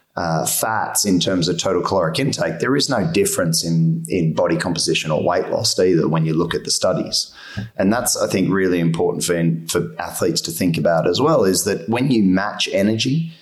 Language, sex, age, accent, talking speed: English, male, 30-49, Australian, 210 wpm